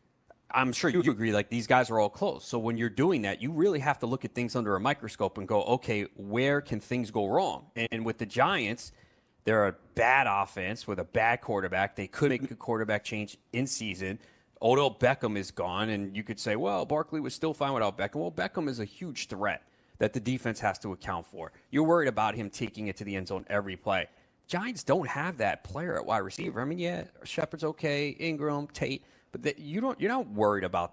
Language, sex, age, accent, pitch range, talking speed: English, male, 30-49, American, 105-145 Hz, 225 wpm